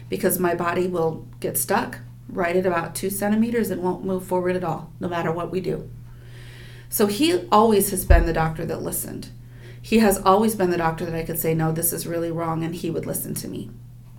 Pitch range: 120-195 Hz